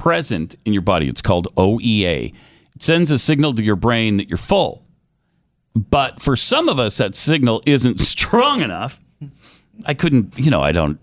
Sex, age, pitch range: male, 40-59, 100-150 Hz